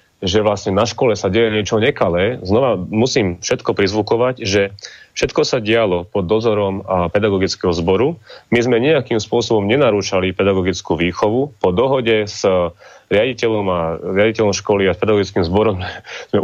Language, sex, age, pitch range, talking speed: Slovak, male, 30-49, 95-110 Hz, 140 wpm